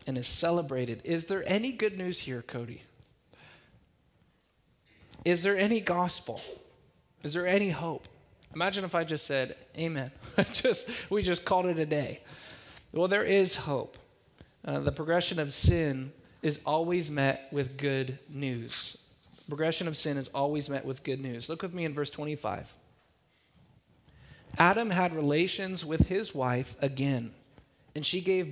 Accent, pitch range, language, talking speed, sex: American, 140-175 Hz, English, 150 wpm, male